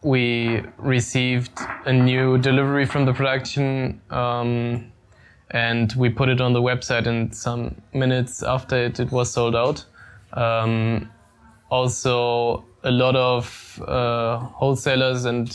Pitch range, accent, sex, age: 120-135 Hz, German, male, 20-39